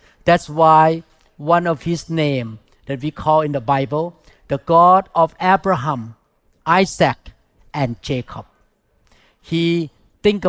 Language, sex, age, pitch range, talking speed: English, male, 50-69, 145-180 Hz, 120 wpm